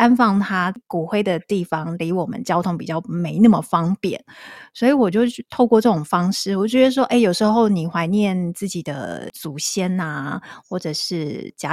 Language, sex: Chinese, female